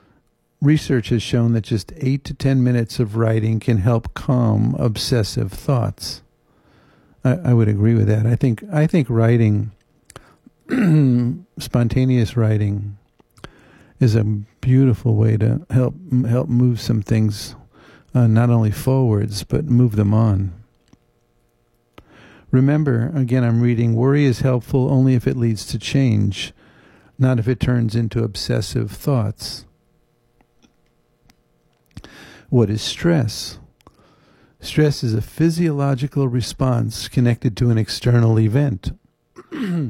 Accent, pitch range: American, 110-130 Hz